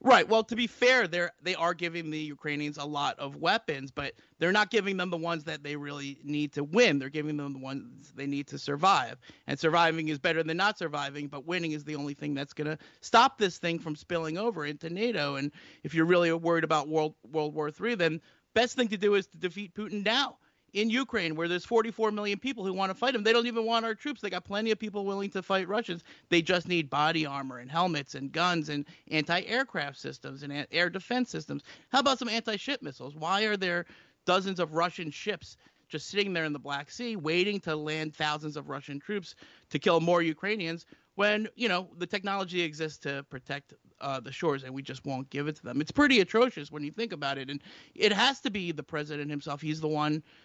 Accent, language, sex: American, English, male